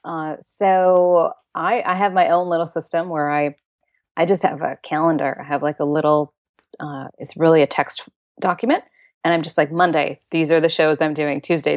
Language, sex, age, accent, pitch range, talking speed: English, female, 30-49, American, 150-185 Hz, 200 wpm